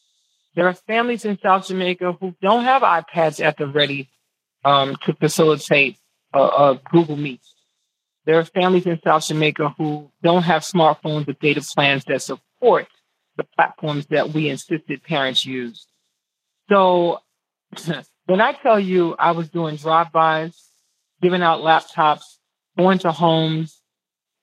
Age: 40-59